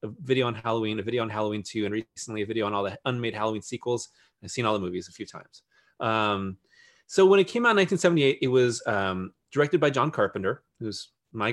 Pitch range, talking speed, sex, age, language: 105-150 Hz, 230 wpm, male, 30-49, English